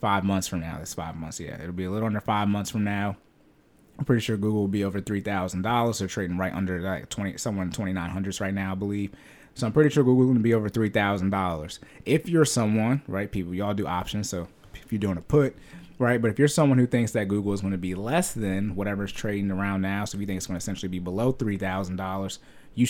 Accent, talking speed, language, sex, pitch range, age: American, 255 wpm, English, male, 95-110 Hz, 20-39